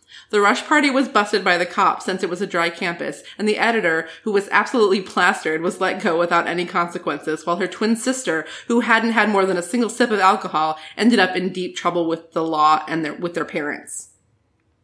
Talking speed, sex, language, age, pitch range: 220 wpm, female, English, 20-39, 170-240 Hz